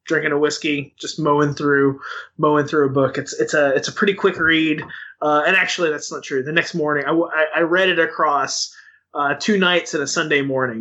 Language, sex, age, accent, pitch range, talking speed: English, male, 20-39, American, 150-185 Hz, 220 wpm